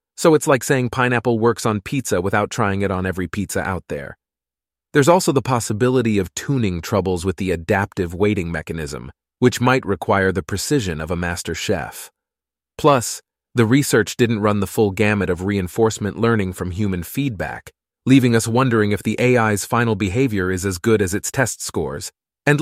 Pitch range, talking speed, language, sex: 100-135 Hz, 180 wpm, English, male